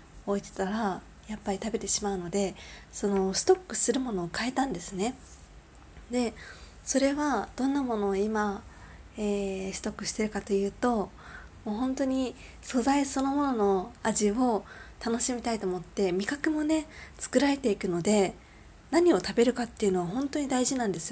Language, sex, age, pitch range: Japanese, female, 20-39, 195-255 Hz